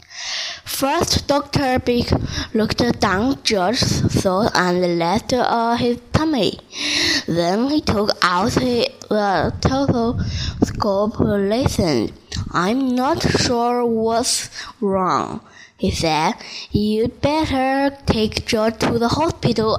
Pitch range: 200-255 Hz